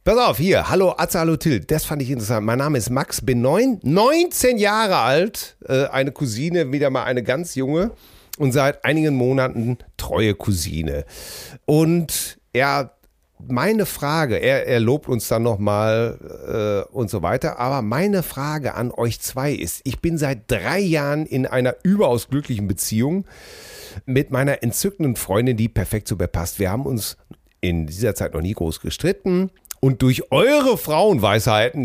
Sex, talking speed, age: male, 160 wpm, 40-59